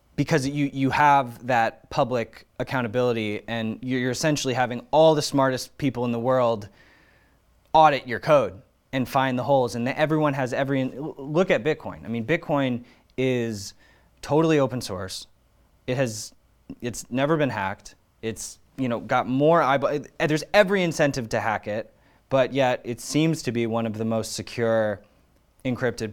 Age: 20-39